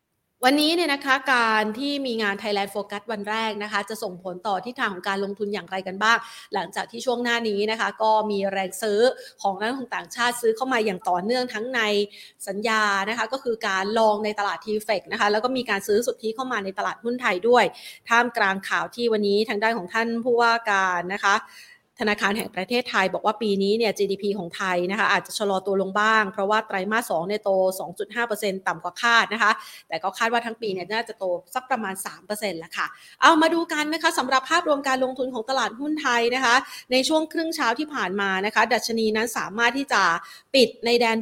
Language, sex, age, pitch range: Thai, female, 30-49, 200-245 Hz